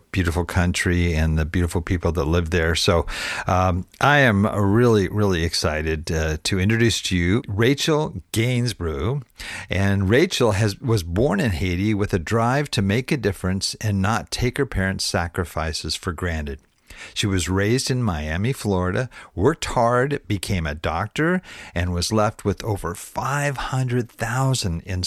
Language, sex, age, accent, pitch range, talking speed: English, male, 50-69, American, 90-115 Hz, 155 wpm